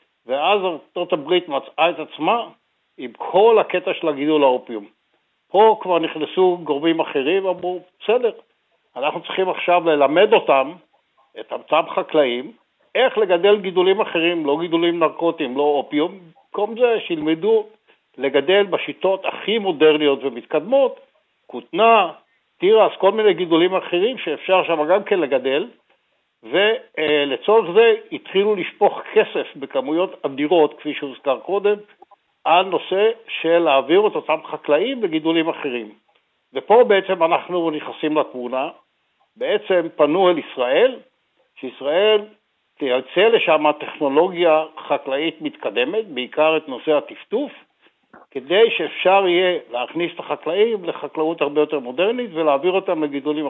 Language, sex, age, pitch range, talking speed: Hebrew, male, 60-79, 150-215 Hz, 120 wpm